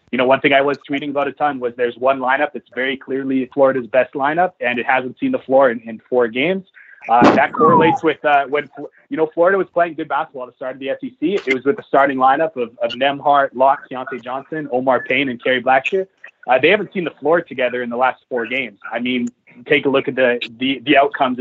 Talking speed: 245 wpm